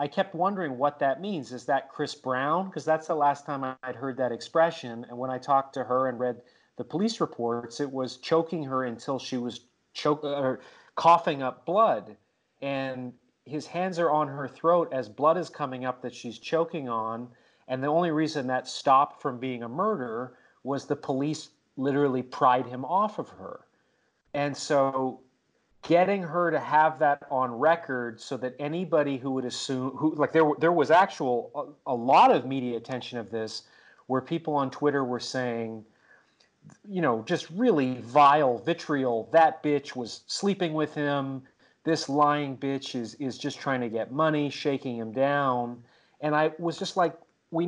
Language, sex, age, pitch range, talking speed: English, male, 40-59, 125-160 Hz, 180 wpm